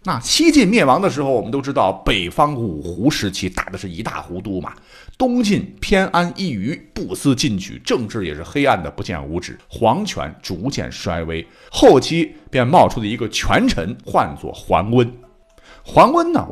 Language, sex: Chinese, male